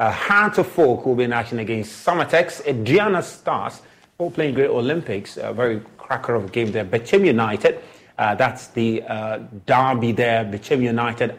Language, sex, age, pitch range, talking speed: English, male, 30-49, 115-150 Hz, 170 wpm